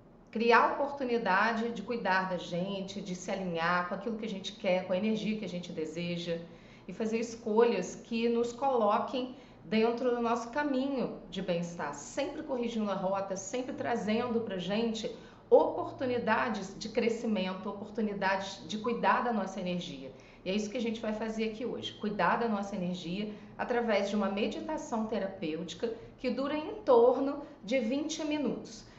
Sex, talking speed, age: female, 160 wpm, 30-49